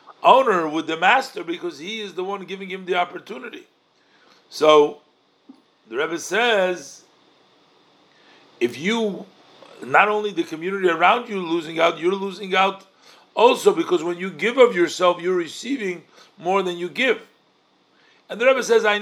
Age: 50-69